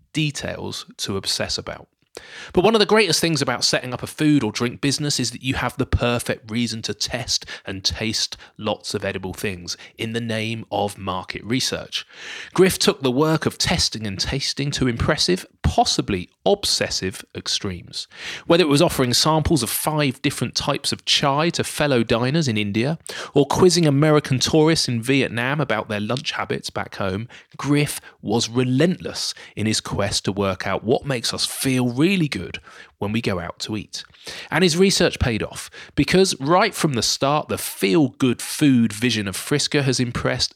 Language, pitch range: English, 105-155 Hz